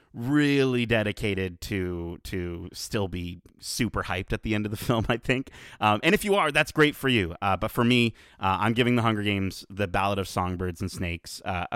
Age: 30-49